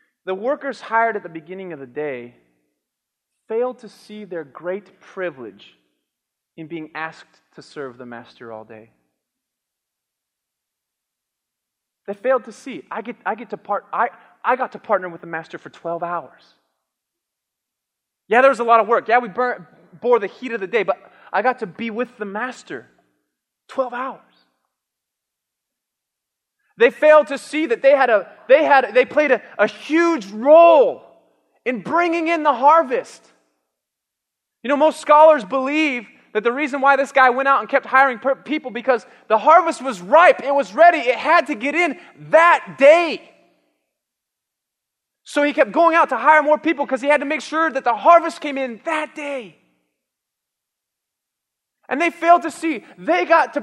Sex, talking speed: male, 165 wpm